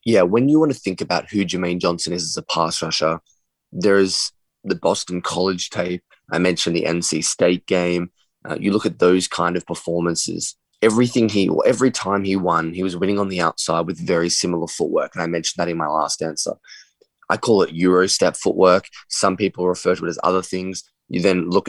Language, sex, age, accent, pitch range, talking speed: English, male, 20-39, Australian, 90-100 Hz, 210 wpm